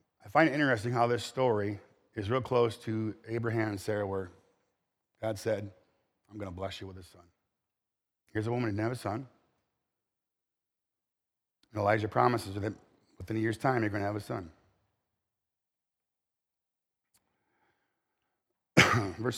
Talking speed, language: 150 wpm, English